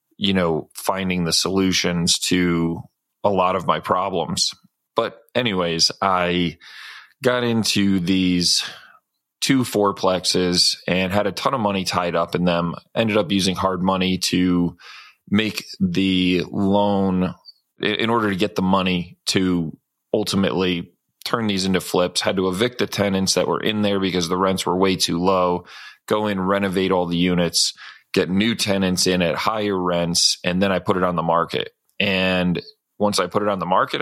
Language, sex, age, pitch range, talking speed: English, male, 20-39, 90-100 Hz, 170 wpm